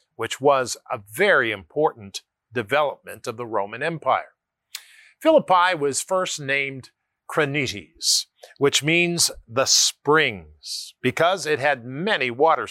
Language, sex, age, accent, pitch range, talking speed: English, male, 50-69, American, 135-195 Hz, 115 wpm